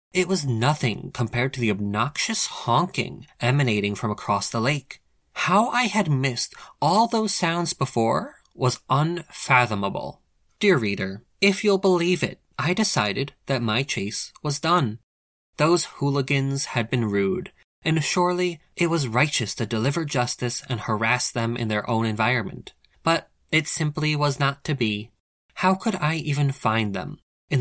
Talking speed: 150 wpm